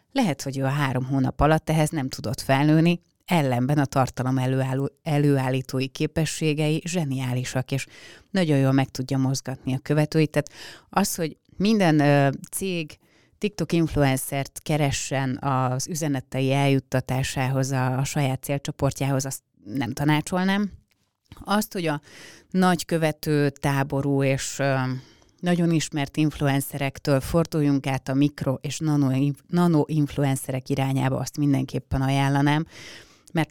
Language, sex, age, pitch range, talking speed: Hungarian, female, 30-49, 130-150 Hz, 120 wpm